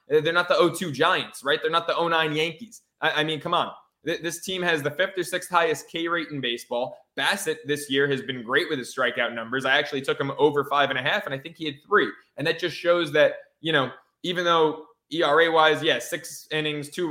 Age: 20-39